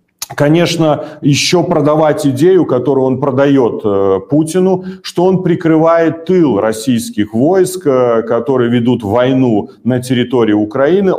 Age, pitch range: 40-59, 120-155 Hz